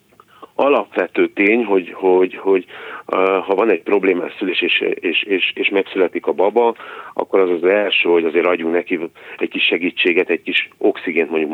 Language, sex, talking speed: Hungarian, male, 170 wpm